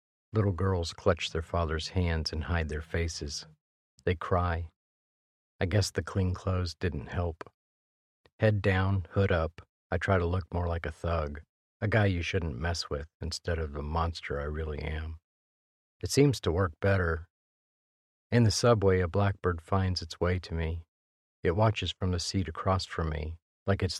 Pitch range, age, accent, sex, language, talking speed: 80-95 Hz, 50-69, American, male, English, 175 wpm